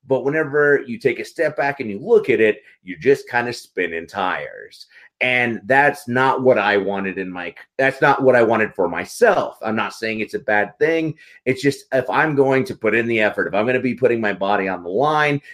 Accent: American